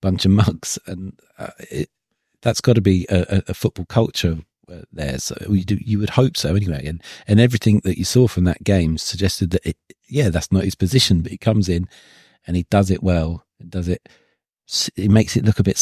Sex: male